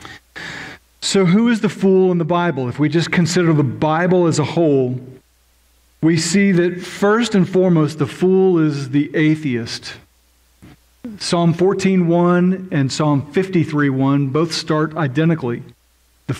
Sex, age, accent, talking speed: male, 40-59, American, 135 wpm